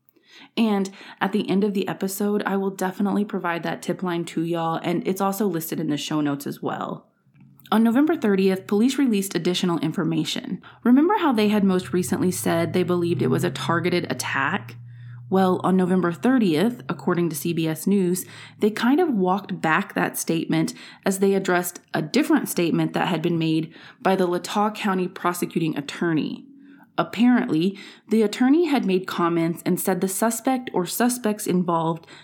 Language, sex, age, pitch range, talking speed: English, female, 20-39, 175-220 Hz, 170 wpm